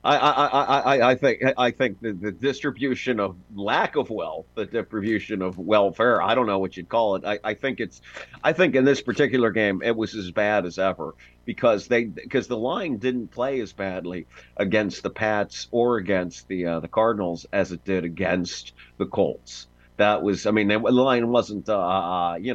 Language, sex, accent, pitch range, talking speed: English, male, American, 90-115 Hz, 195 wpm